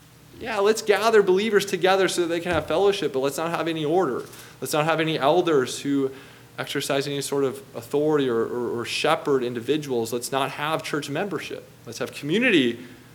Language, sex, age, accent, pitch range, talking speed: English, male, 20-39, American, 135-175 Hz, 185 wpm